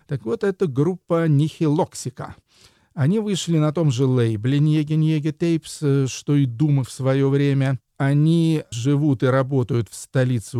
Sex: male